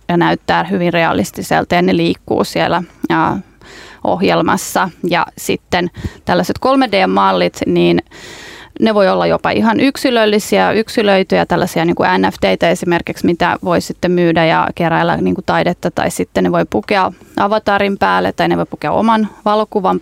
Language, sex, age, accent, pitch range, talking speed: Finnish, female, 30-49, native, 185-225 Hz, 135 wpm